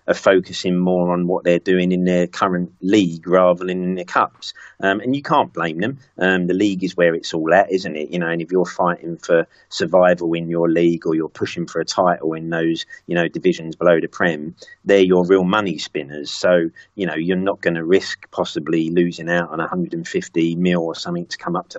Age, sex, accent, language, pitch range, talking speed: 40-59, male, British, English, 85-95 Hz, 225 wpm